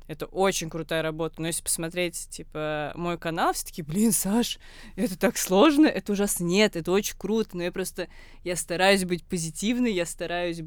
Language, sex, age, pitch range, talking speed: Russian, female, 20-39, 155-180 Hz, 175 wpm